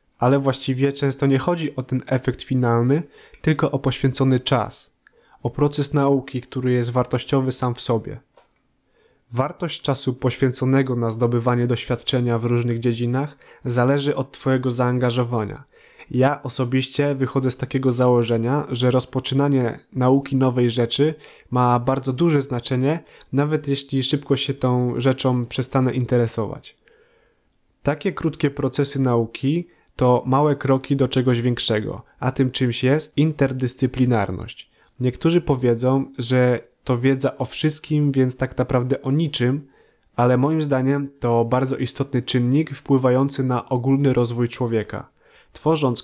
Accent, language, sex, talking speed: native, Polish, male, 130 wpm